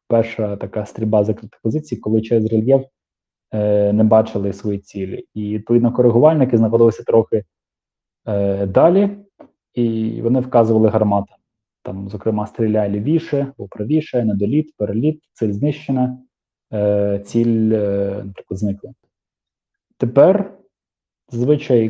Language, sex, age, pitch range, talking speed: Ukrainian, male, 20-39, 105-130 Hz, 110 wpm